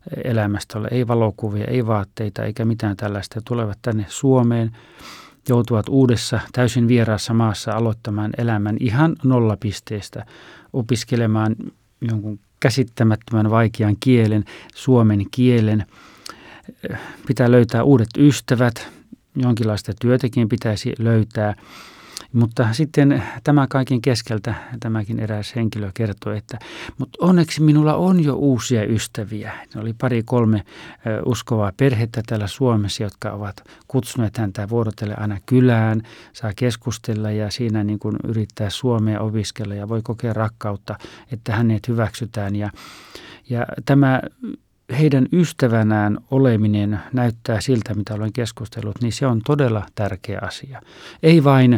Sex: male